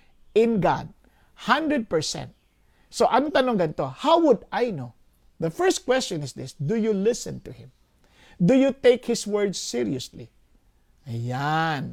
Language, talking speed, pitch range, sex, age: English, 140 wpm, 185-260 Hz, male, 50-69